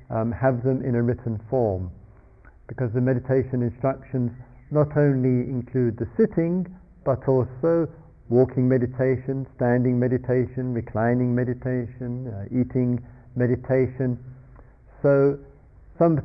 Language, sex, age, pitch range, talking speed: English, male, 50-69, 120-135 Hz, 105 wpm